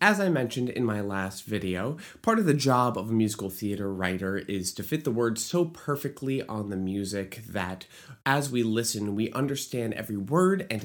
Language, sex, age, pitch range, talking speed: English, male, 30-49, 105-155 Hz, 195 wpm